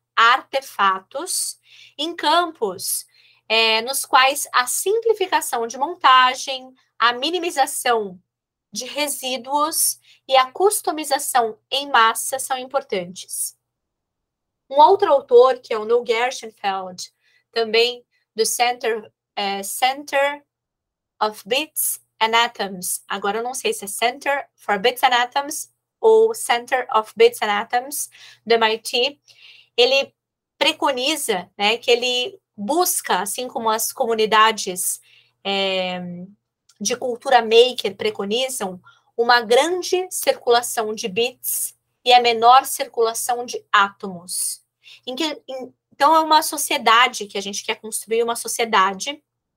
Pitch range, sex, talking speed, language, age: 220-280 Hz, female, 115 wpm, Portuguese, 20-39